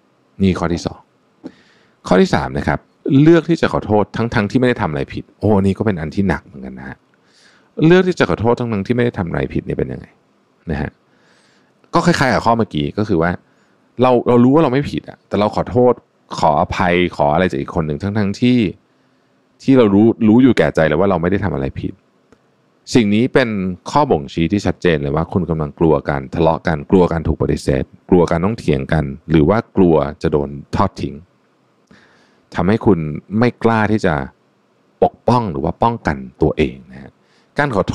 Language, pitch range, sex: Thai, 80-115 Hz, male